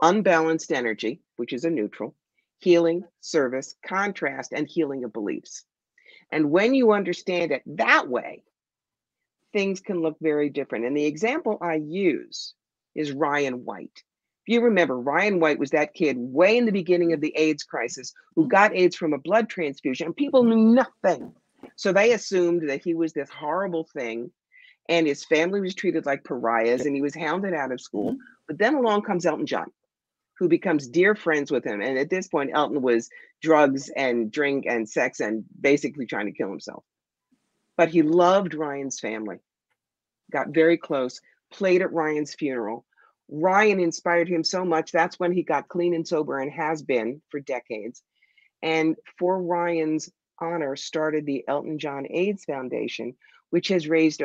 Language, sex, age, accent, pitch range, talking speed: English, female, 50-69, American, 145-185 Hz, 170 wpm